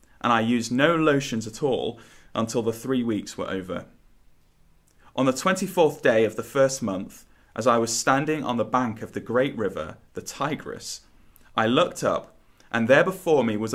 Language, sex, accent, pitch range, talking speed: English, male, British, 95-130 Hz, 185 wpm